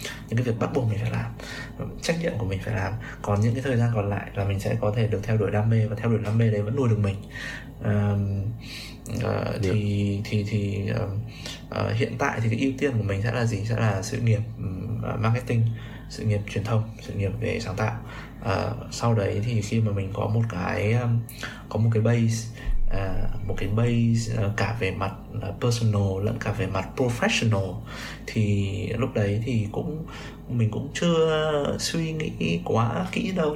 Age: 20-39